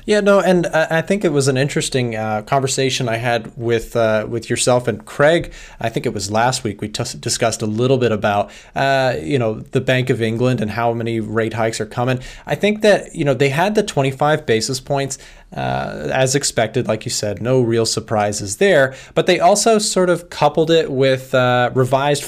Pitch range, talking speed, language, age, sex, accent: 115-140 Hz, 210 wpm, English, 20-39, male, American